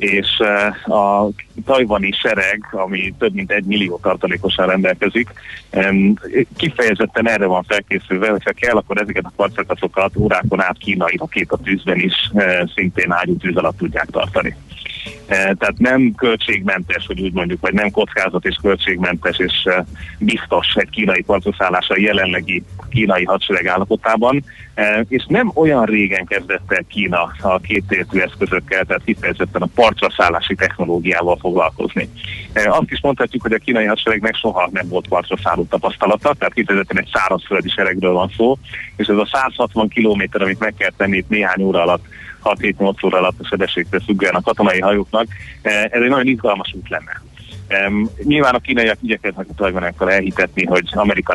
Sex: male